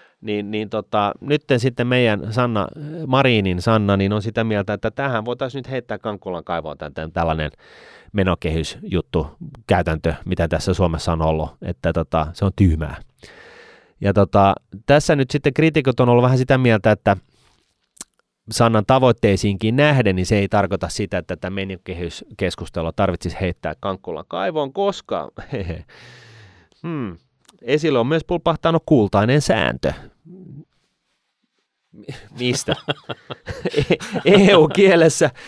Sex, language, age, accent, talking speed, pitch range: male, Finnish, 30-49, native, 115 wpm, 95-135 Hz